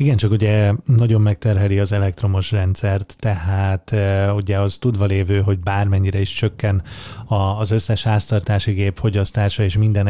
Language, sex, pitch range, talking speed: Hungarian, male, 100-110 Hz, 145 wpm